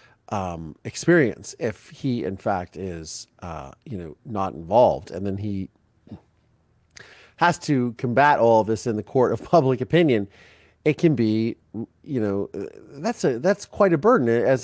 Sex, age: male, 40-59